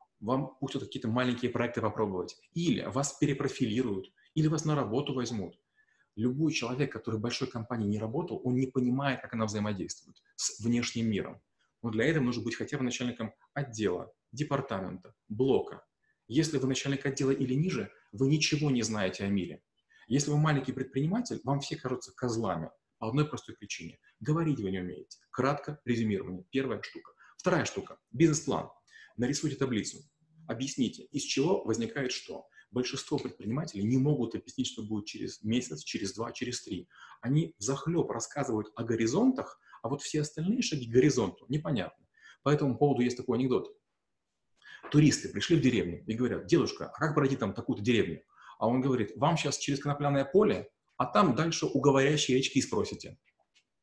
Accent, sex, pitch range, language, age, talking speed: native, male, 115-145 Hz, Russian, 30-49, 160 wpm